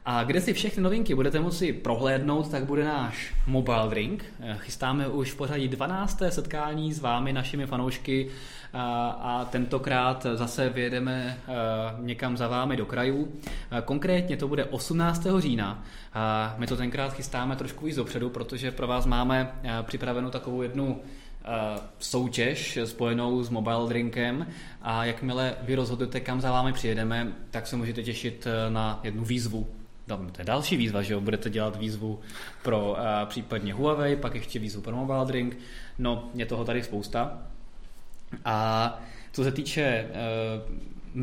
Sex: male